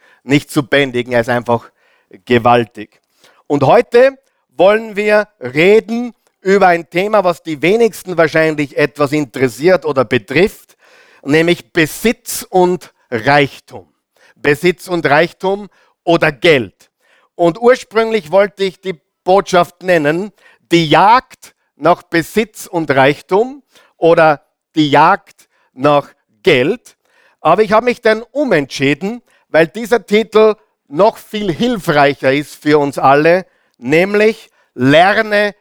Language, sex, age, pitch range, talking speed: German, male, 50-69, 145-205 Hz, 115 wpm